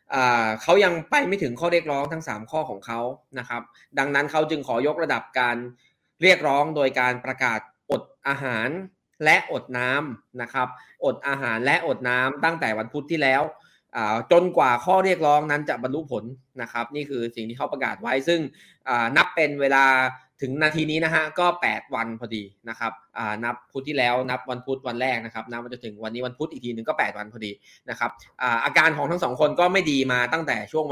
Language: Thai